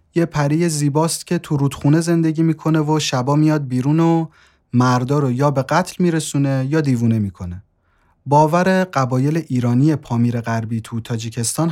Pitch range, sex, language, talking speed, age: 115-155 Hz, male, Persian, 145 wpm, 30-49